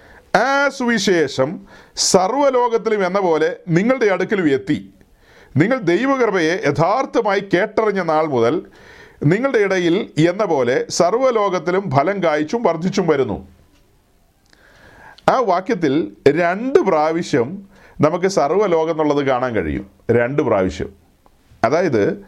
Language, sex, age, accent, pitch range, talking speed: Malayalam, male, 40-59, native, 155-220 Hz, 90 wpm